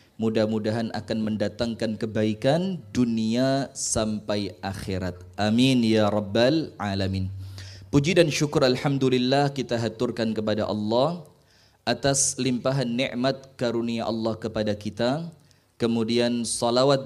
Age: 20-39